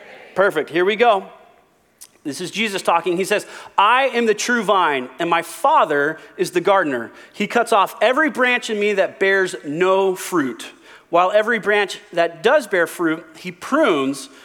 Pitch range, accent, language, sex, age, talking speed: 175-220 Hz, American, English, male, 30-49, 170 wpm